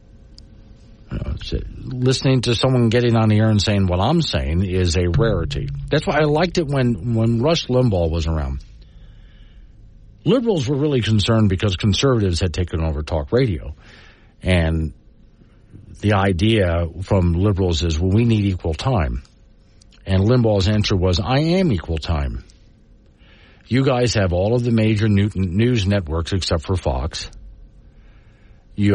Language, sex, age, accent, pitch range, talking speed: English, male, 50-69, American, 85-115 Hz, 145 wpm